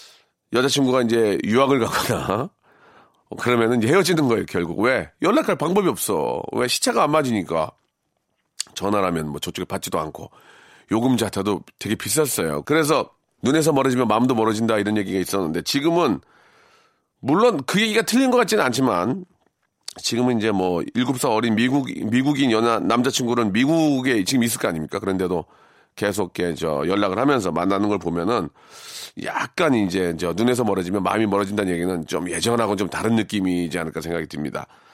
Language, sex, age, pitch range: Korean, male, 40-59, 95-140 Hz